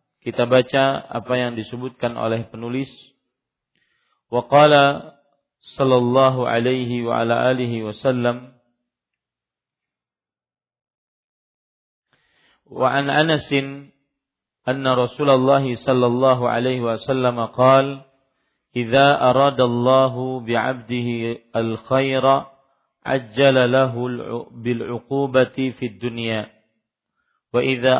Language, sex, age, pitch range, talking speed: Malay, male, 50-69, 120-135 Hz, 80 wpm